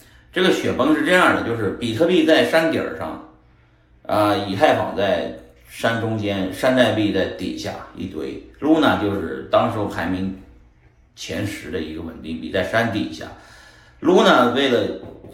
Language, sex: Chinese, male